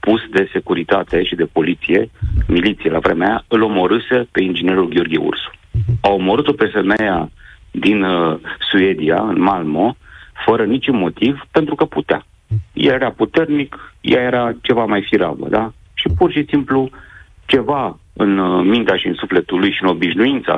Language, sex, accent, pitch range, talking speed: Romanian, male, native, 95-130 Hz, 155 wpm